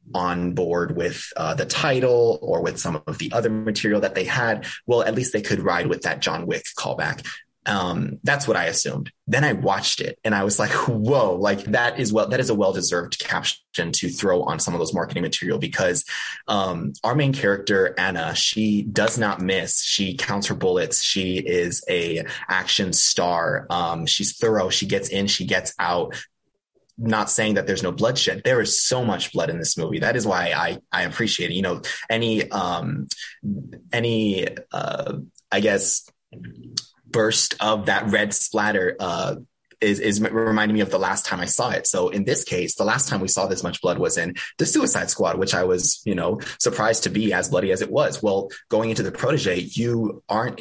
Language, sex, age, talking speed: English, male, 20-39, 200 wpm